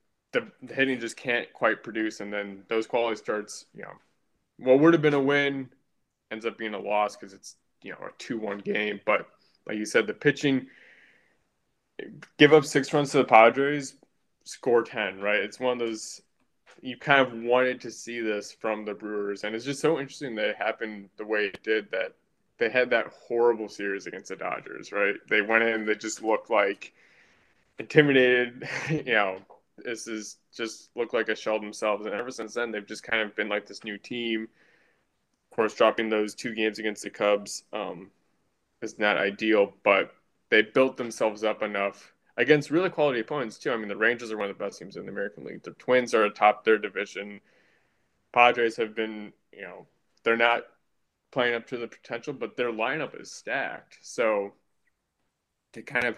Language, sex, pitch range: English, male, 105-125 Hz